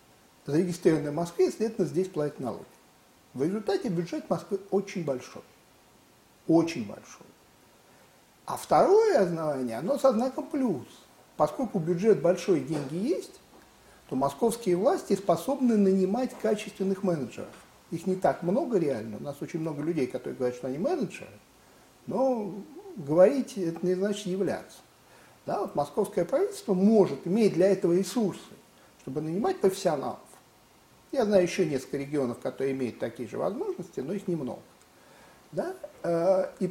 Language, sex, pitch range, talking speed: Russian, male, 155-210 Hz, 130 wpm